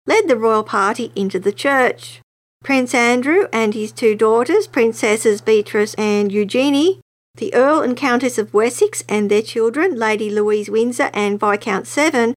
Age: 50-69